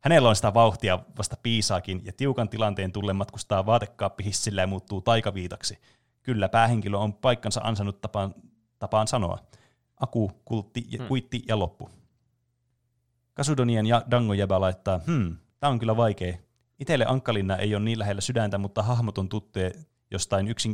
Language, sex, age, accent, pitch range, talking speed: Finnish, male, 30-49, native, 100-120 Hz, 145 wpm